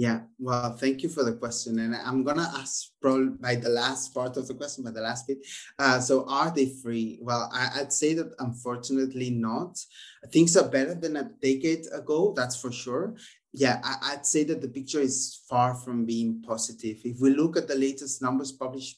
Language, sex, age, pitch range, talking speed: English, male, 20-39, 125-140 Hz, 200 wpm